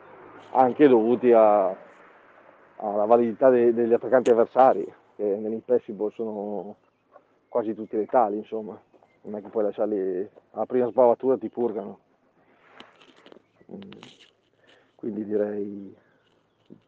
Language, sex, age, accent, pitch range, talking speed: Italian, male, 40-59, native, 110-130 Hz, 90 wpm